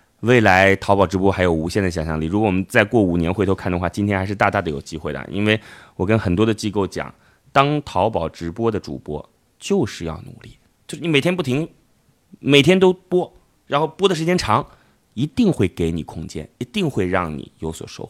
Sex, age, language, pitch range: male, 30-49, Chinese, 85-120 Hz